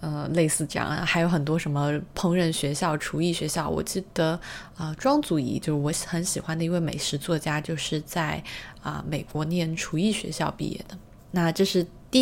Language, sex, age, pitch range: Chinese, female, 20-39, 155-195 Hz